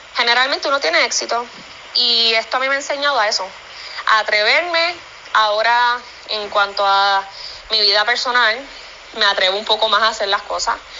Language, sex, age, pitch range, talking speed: Spanish, female, 10-29, 195-265 Hz, 170 wpm